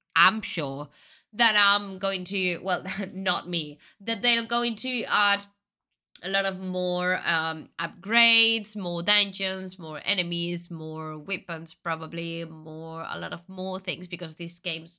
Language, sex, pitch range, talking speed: Finnish, female, 170-225 Hz, 145 wpm